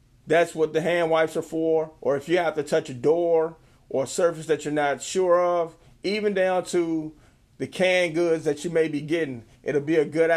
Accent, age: American, 40-59